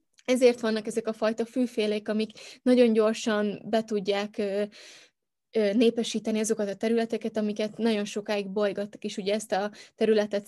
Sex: female